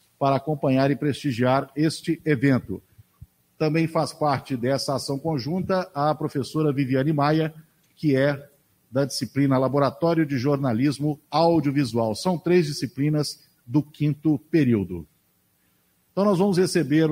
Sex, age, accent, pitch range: male, 50-69, Brazilian, 135-165 Hz